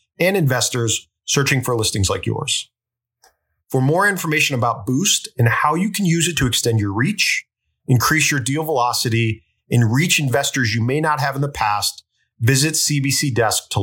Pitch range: 120-145 Hz